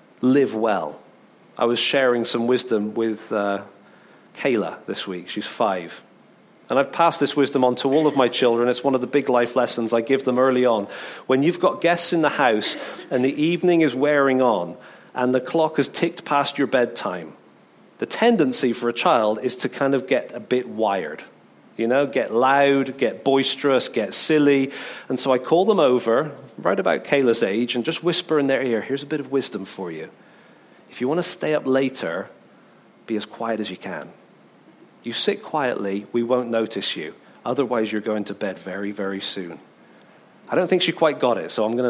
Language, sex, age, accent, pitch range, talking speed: English, male, 40-59, British, 115-140 Hz, 200 wpm